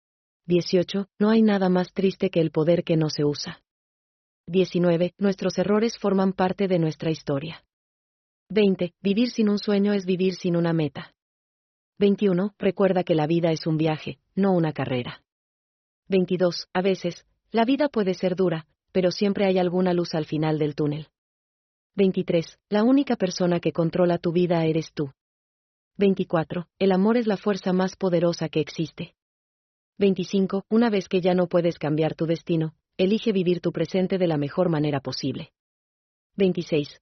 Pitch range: 160-195 Hz